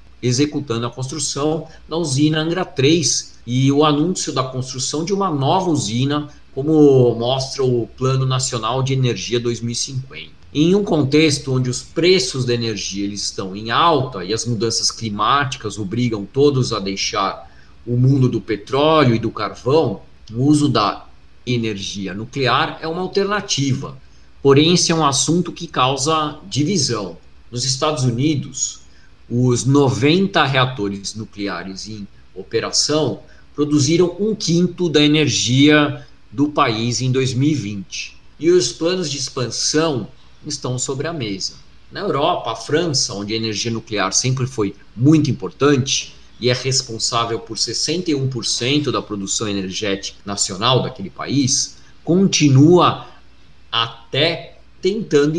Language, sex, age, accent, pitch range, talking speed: Portuguese, male, 50-69, Brazilian, 115-150 Hz, 130 wpm